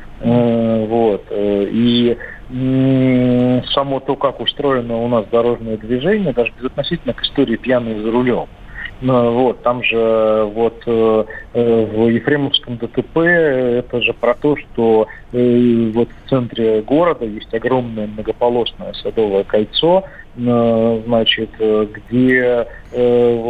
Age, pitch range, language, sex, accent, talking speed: 40-59, 110-125 Hz, Russian, male, native, 105 wpm